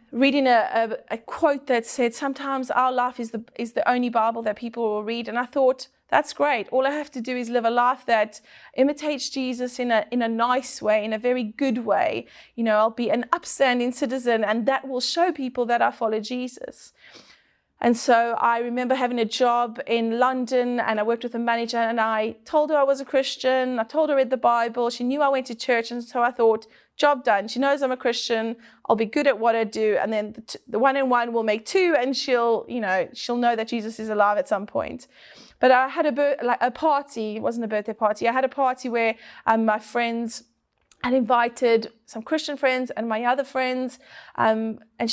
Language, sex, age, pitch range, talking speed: English, female, 30-49, 225-260 Hz, 225 wpm